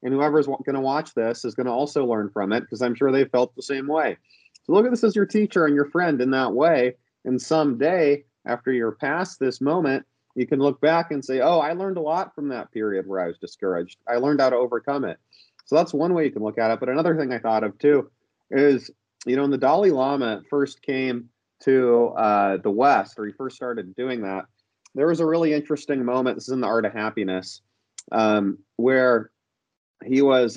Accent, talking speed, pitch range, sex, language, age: American, 230 wpm, 115-145 Hz, male, English, 30-49